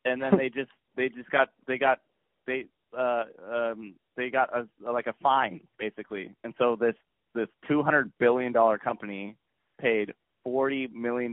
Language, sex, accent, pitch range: English, male, American, 105-130 Hz